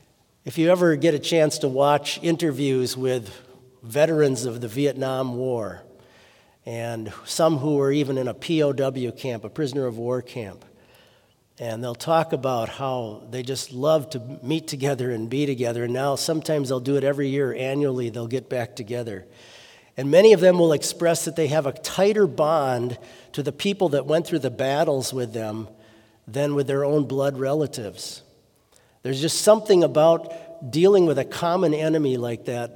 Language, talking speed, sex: English, 175 wpm, male